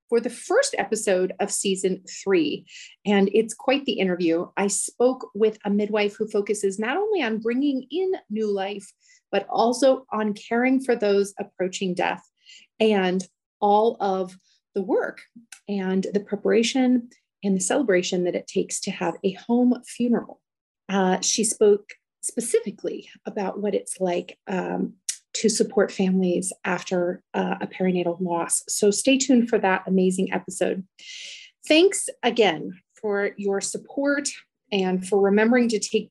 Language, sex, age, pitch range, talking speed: English, female, 30-49, 195-260 Hz, 145 wpm